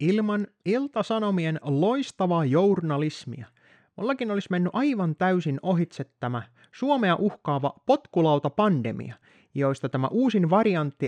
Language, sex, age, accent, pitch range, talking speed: Finnish, male, 30-49, native, 135-195 Hz, 95 wpm